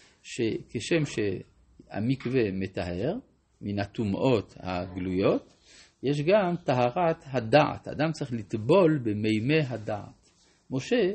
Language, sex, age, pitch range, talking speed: Hebrew, male, 50-69, 115-160 Hz, 85 wpm